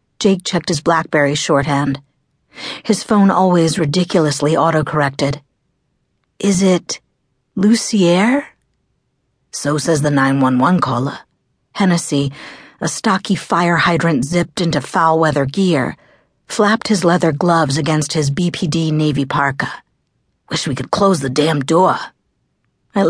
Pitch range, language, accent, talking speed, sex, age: 145-190 Hz, English, American, 115 wpm, female, 50-69